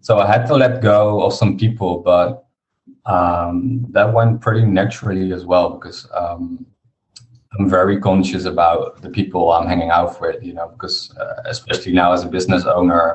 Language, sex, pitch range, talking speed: English, male, 90-115 Hz, 180 wpm